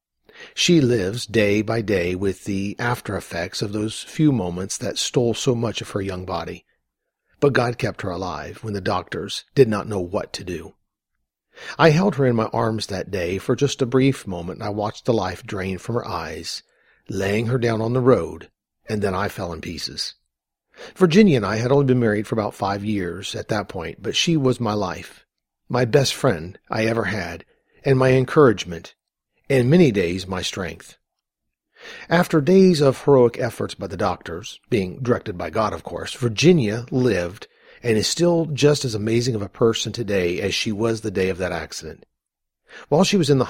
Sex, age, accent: male, 50-69, American